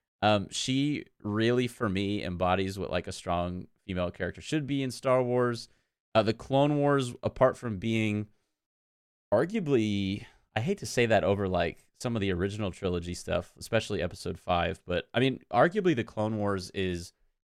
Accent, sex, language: American, male, English